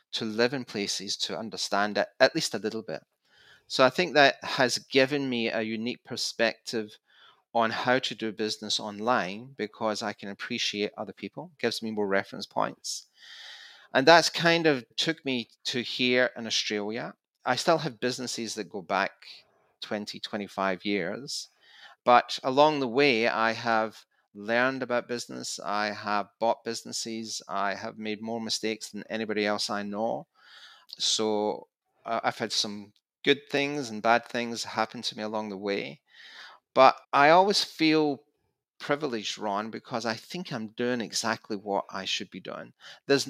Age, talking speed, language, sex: 30-49, 160 wpm, English, male